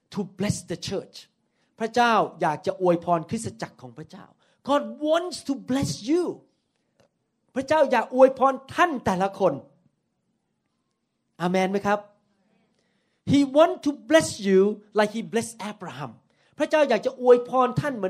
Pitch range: 195-285 Hz